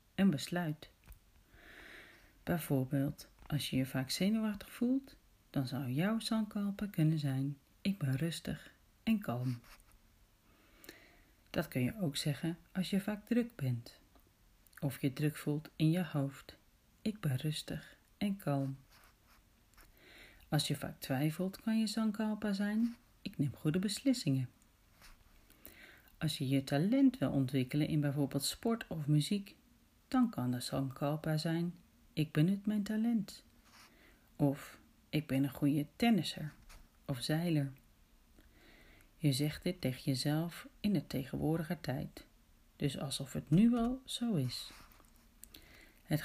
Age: 40-59